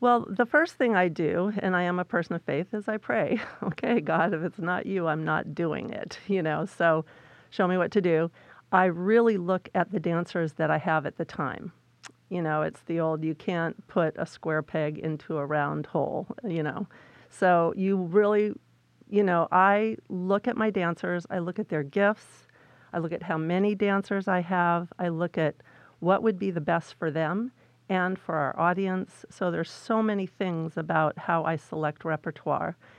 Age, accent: 50-69, American